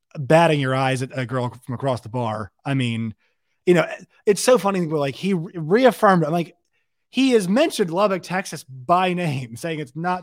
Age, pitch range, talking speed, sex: 20-39, 145-205 Hz, 205 wpm, male